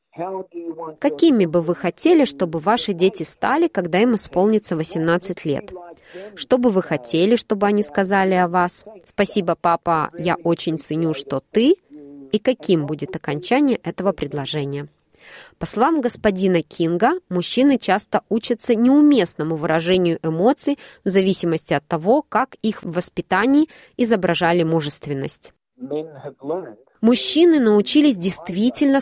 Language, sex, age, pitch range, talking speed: Russian, female, 20-39, 170-225 Hz, 120 wpm